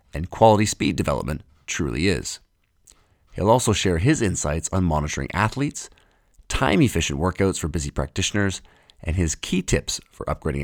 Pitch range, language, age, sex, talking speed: 80-105 Hz, English, 40-59, male, 140 wpm